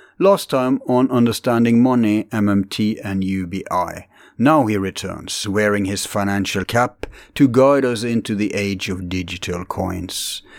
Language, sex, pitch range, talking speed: English, male, 95-115 Hz, 135 wpm